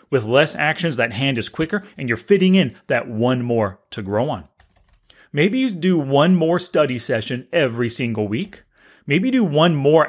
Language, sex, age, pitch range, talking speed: English, male, 30-49, 130-180 Hz, 190 wpm